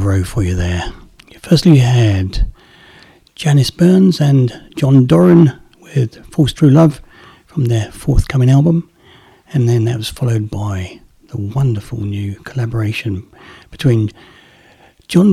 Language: English